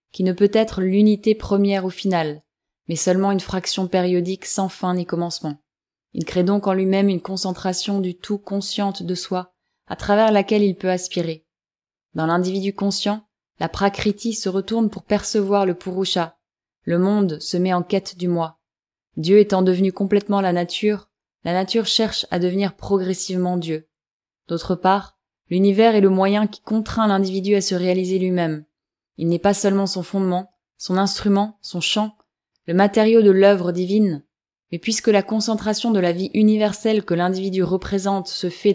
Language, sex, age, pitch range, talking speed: French, female, 20-39, 180-205 Hz, 165 wpm